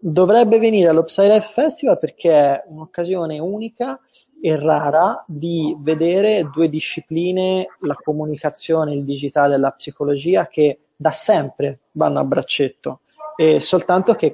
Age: 20-39